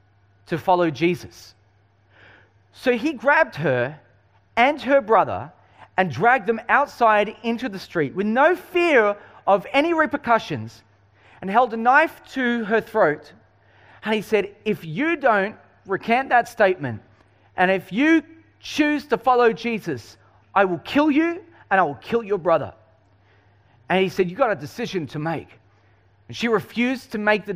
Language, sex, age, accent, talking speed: English, male, 30-49, Australian, 155 wpm